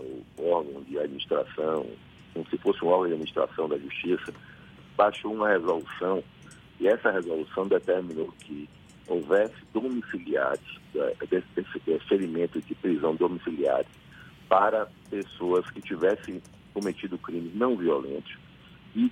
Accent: Brazilian